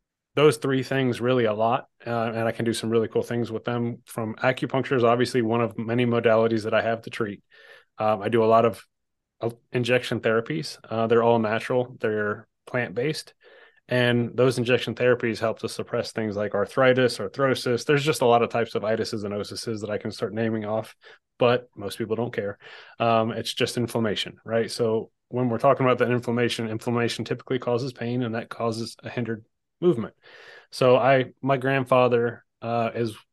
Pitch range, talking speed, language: 115-125 Hz, 190 wpm, English